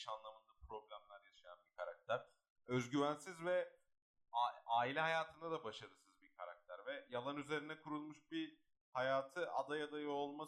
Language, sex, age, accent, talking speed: Turkish, male, 30-49, native, 125 wpm